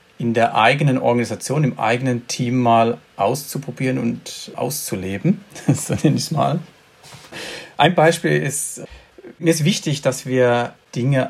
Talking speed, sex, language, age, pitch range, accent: 125 wpm, male, German, 40-59, 115-145 Hz, German